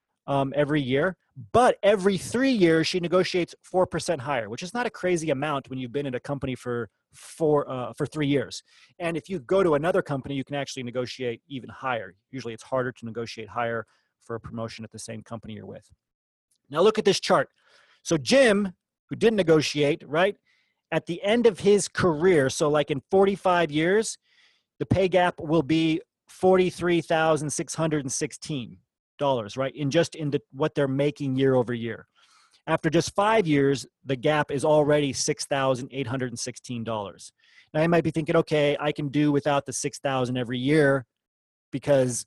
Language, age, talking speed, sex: English, 30-49, 170 wpm, male